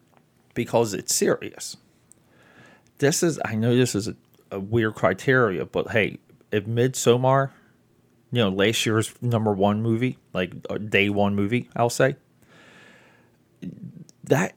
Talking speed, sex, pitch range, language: 130 wpm, male, 105-130 Hz, English